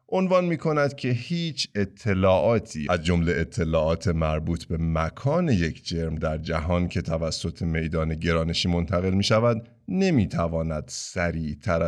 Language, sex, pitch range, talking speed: Persian, male, 85-130 Hz, 115 wpm